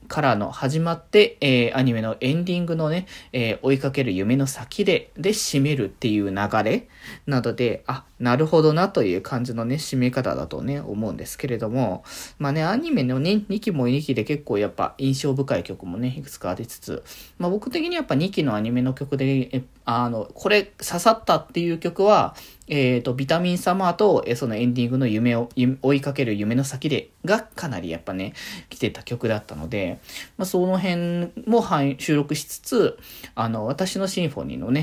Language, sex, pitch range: Japanese, male, 120-180 Hz